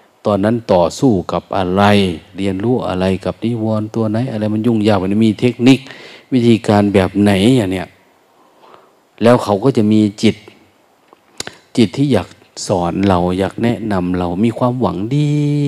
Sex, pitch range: male, 95-120 Hz